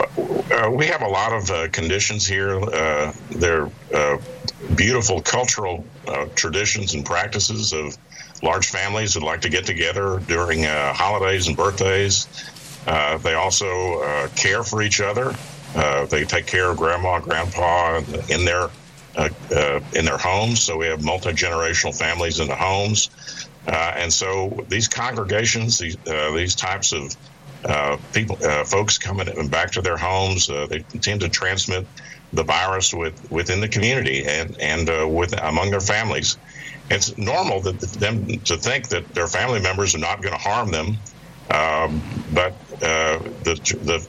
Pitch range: 85-110 Hz